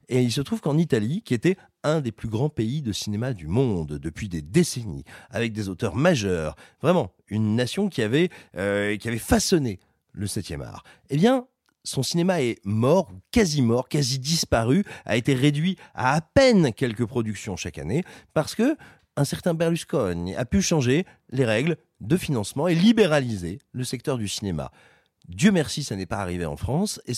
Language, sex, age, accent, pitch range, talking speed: French, male, 40-59, French, 105-165 Hz, 185 wpm